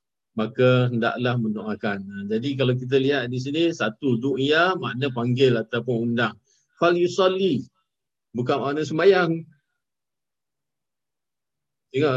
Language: Malay